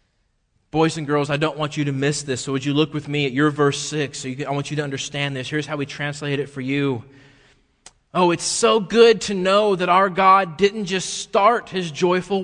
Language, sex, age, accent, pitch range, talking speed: English, male, 30-49, American, 140-190 Hz, 240 wpm